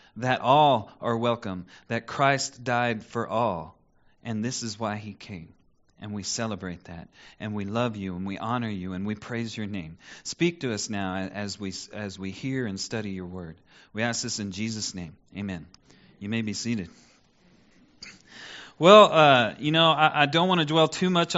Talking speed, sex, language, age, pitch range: 190 wpm, male, English, 40-59, 110-155 Hz